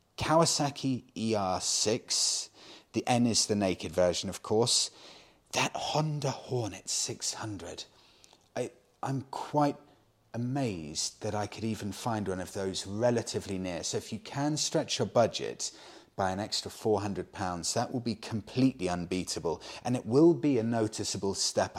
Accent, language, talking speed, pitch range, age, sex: British, English, 140 wpm, 90-120 Hz, 30-49, male